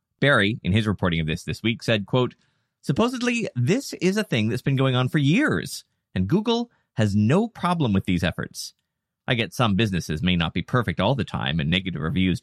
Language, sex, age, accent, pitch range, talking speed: English, male, 30-49, American, 95-145 Hz, 210 wpm